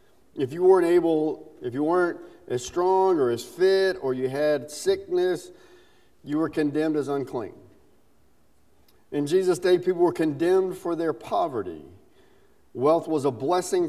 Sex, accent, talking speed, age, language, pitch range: male, American, 145 wpm, 40-59, English, 135-190 Hz